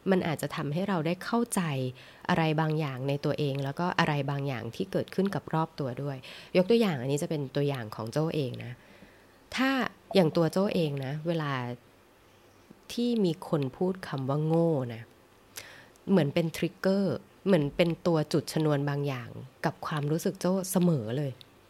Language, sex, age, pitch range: English, female, 20-39, 140-190 Hz